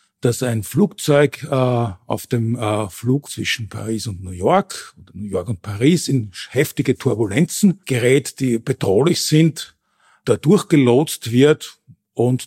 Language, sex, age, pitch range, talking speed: German, male, 50-69, 115-145 Hz, 135 wpm